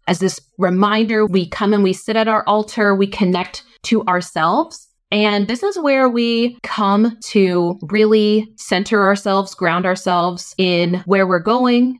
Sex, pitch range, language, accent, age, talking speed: female, 175-225 Hz, English, American, 20-39, 155 wpm